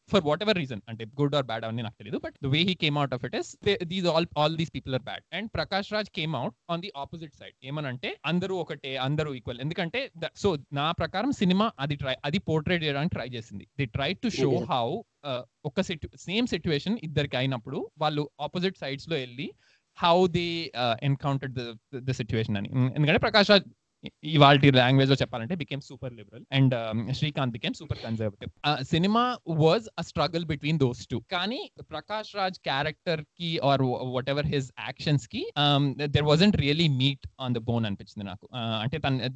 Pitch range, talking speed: 130-165 Hz, 115 wpm